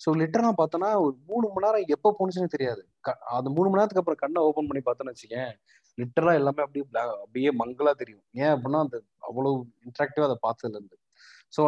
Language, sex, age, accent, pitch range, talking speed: Tamil, male, 30-49, native, 125-160 Hz, 180 wpm